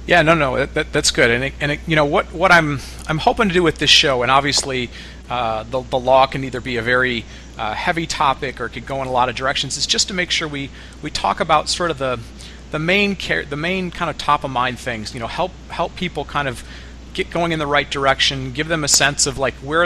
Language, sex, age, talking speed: English, male, 40-59, 265 wpm